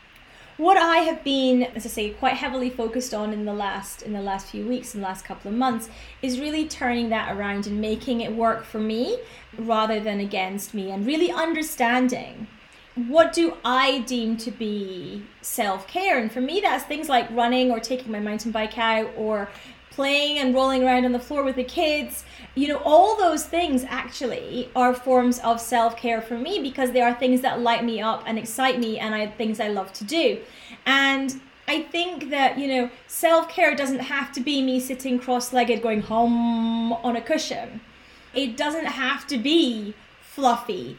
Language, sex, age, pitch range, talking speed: English, female, 30-49, 225-275 Hz, 185 wpm